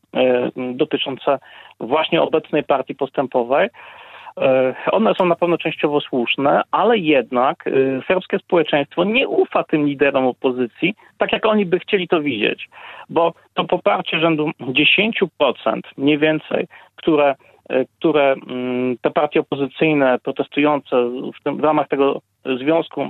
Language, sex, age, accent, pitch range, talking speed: Polish, male, 40-59, native, 140-185 Hz, 115 wpm